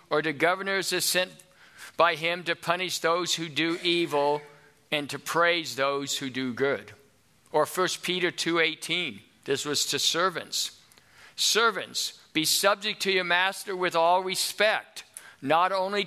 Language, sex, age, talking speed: English, male, 50-69, 150 wpm